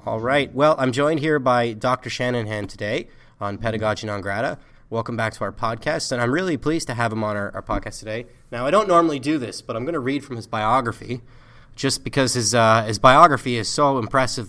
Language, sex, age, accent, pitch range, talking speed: English, male, 30-49, American, 115-135 Hz, 225 wpm